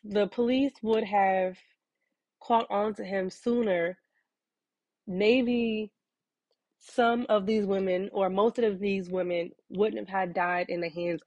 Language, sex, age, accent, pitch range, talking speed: English, female, 20-39, American, 180-210 Hz, 140 wpm